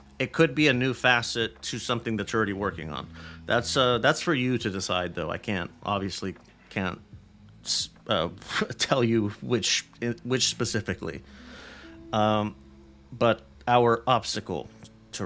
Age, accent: 30-49, American